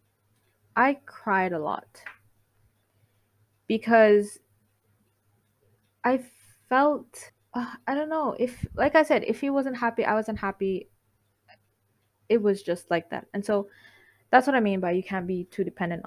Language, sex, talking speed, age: English, female, 145 wpm, 20-39